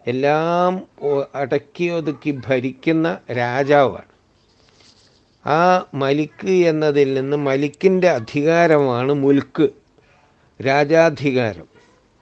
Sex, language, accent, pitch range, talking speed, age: male, Malayalam, native, 130-160 Hz, 60 wpm, 60-79